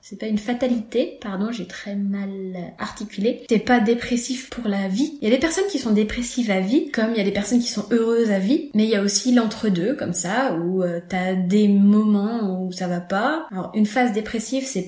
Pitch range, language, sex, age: 200-245 Hz, French, female, 20-39